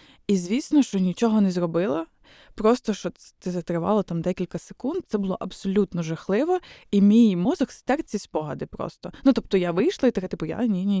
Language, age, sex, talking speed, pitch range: Ukrainian, 20-39, female, 175 wpm, 180-220 Hz